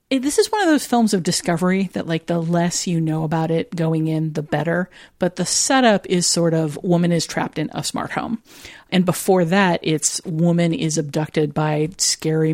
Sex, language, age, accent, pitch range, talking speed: female, English, 40-59, American, 155-180 Hz, 200 wpm